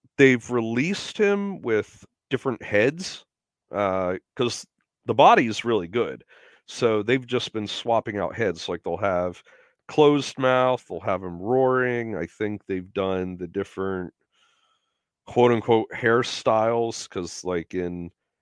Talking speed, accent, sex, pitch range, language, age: 135 wpm, American, male, 95-140 Hz, English, 30-49